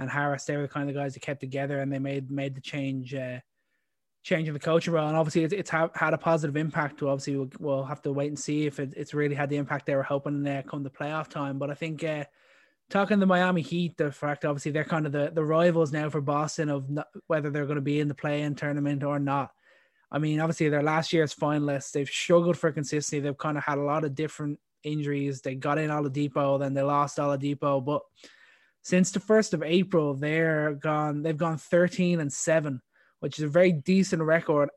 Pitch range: 145-165 Hz